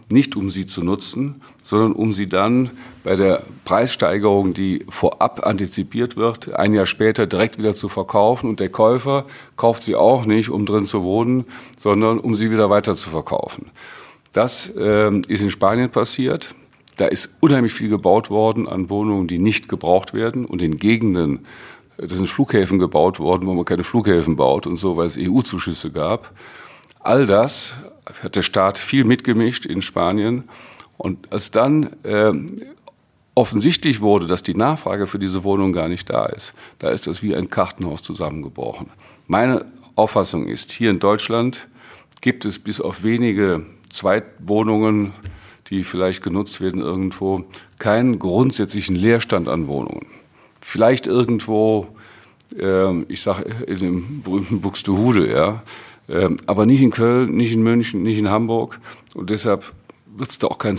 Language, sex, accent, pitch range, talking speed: German, male, German, 95-115 Hz, 155 wpm